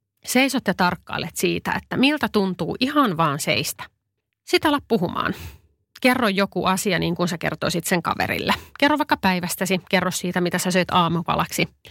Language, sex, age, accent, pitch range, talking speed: Finnish, female, 30-49, native, 175-235 Hz, 155 wpm